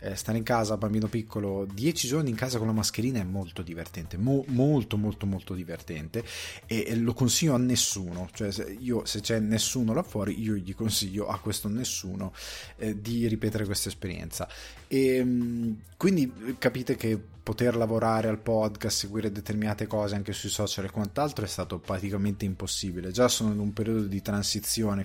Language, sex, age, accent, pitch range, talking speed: Italian, male, 20-39, native, 95-115 Hz, 175 wpm